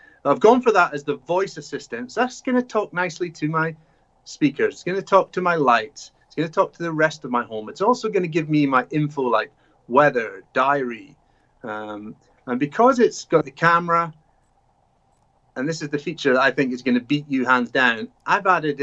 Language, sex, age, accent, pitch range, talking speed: English, male, 30-49, British, 140-175 Hz, 220 wpm